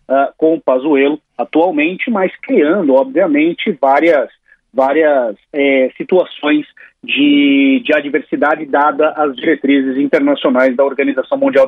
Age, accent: 40-59, Brazilian